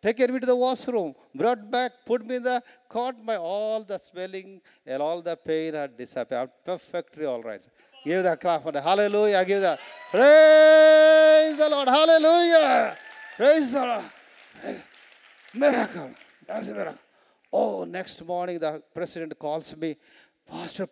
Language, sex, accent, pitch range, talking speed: English, male, Indian, 150-240 Hz, 140 wpm